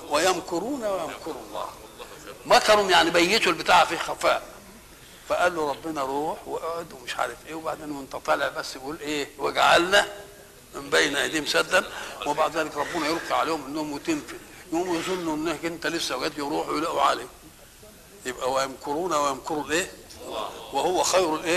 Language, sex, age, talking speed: Arabic, male, 60-79, 145 wpm